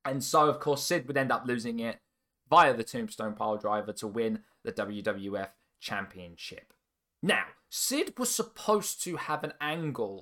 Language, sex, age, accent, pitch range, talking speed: English, male, 20-39, British, 115-170 Hz, 160 wpm